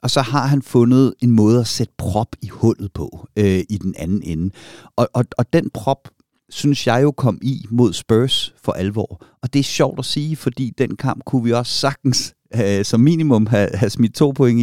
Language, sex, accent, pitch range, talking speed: Danish, male, native, 105-130 Hz, 210 wpm